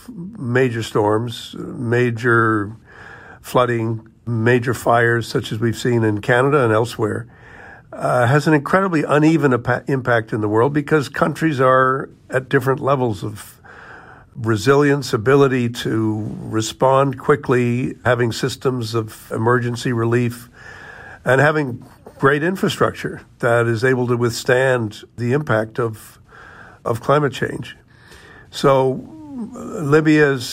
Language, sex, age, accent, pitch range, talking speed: English, male, 50-69, American, 115-135 Hz, 110 wpm